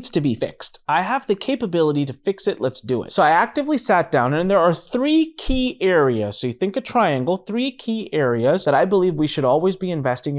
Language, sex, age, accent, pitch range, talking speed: English, male, 30-49, American, 145-200 Hz, 230 wpm